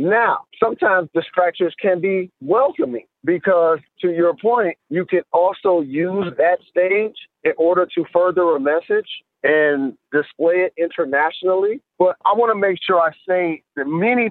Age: 40-59